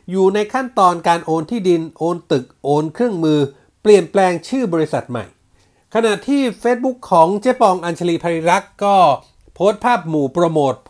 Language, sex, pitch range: Thai, male, 150-210 Hz